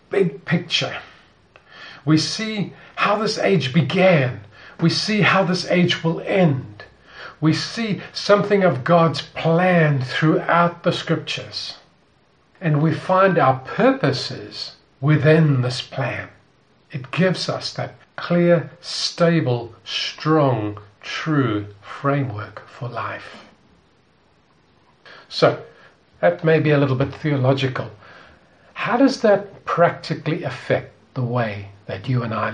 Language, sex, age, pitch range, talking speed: English, male, 50-69, 130-170 Hz, 115 wpm